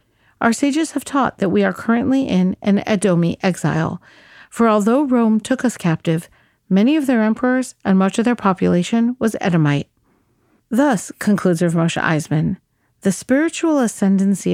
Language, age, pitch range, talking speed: English, 50-69, 180-235 Hz, 155 wpm